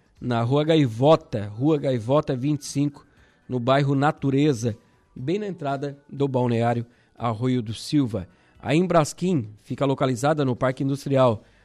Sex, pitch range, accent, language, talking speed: male, 125-155 Hz, Brazilian, Portuguese, 125 wpm